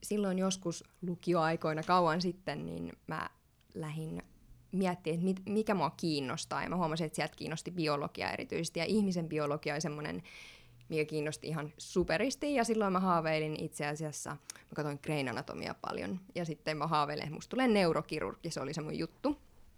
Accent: native